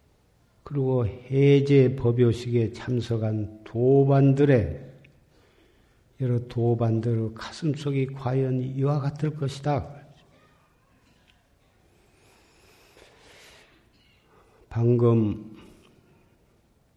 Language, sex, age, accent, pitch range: Korean, male, 50-69, native, 105-125 Hz